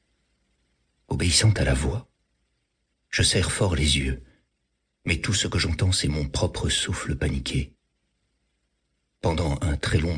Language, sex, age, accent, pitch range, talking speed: French, male, 60-79, French, 65-90 Hz, 135 wpm